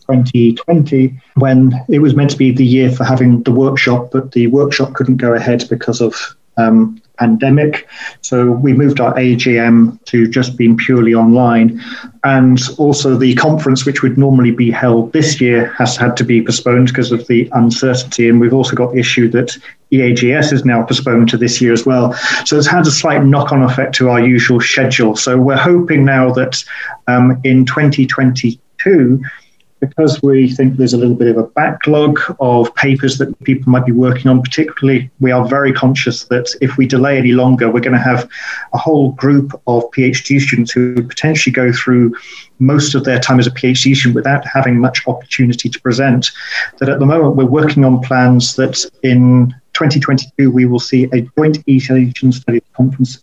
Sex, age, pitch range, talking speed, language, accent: male, 40-59, 120-135 Hz, 185 wpm, English, British